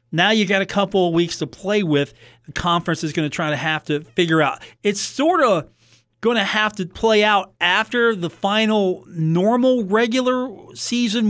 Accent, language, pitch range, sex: American, English, 150-195 Hz, male